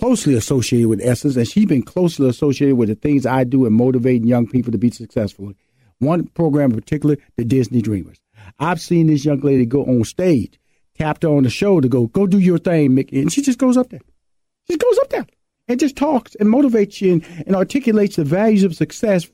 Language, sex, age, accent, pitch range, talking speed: English, male, 50-69, American, 135-200 Hz, 225 wpm